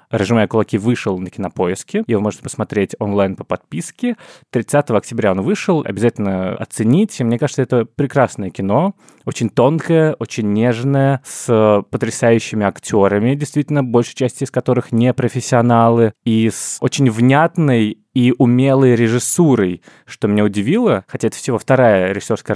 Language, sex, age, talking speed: Russian, male, 20-39, 135 wpm